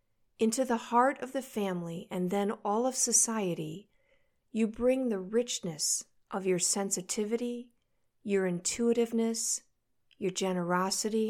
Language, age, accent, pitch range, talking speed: English, 50-69, American, 180-235 Hz, 115 wpm